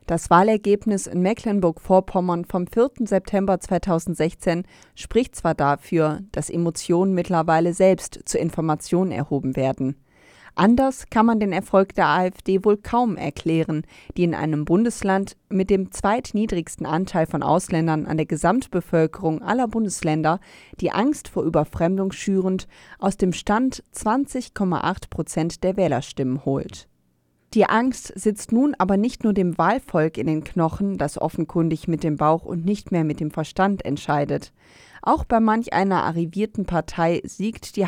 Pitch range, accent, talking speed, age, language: 160-205 Hz, German, 140 wpm, 30-49, German